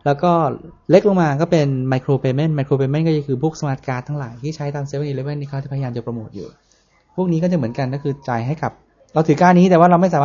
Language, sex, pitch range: Thai, male, 135-165 Hz